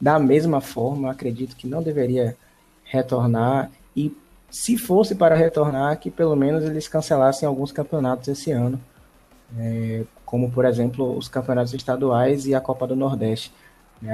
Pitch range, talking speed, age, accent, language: 120-140 Hz, 150 wpm, 20-39, Brazilian, Portuguese